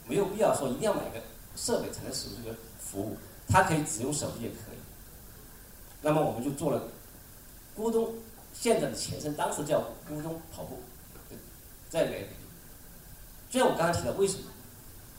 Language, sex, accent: Chinese, male, native